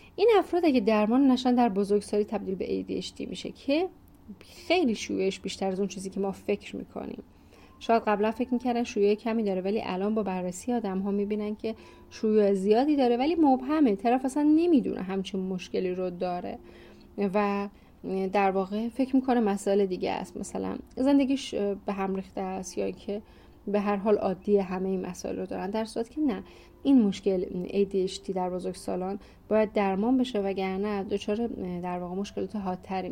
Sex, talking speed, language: female, 170 wpm, Persian